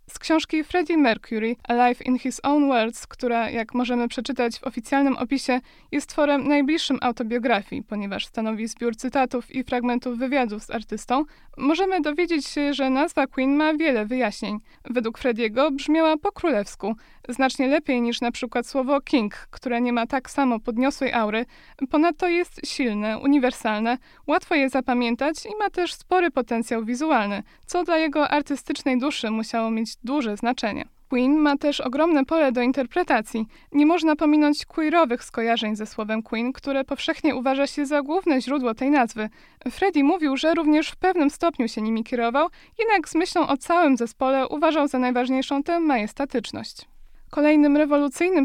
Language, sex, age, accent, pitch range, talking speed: Polish, female, 20-39, native, 245-305 Hz, 155 wpm